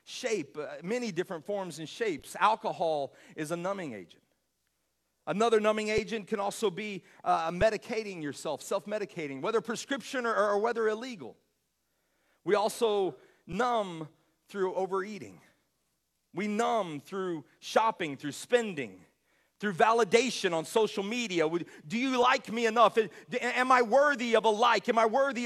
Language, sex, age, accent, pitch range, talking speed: English, male, 40-59, American, 195-255 Hz, 145 wpm